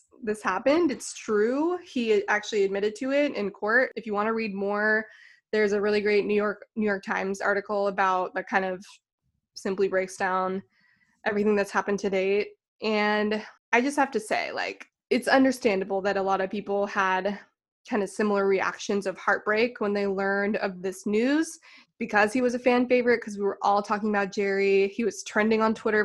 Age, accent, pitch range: 20-39, American, 200-240 Hz